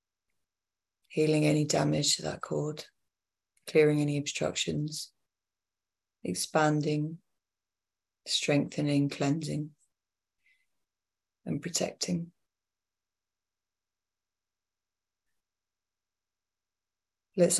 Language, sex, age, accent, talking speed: English, female, 30-49, British, 50 wpm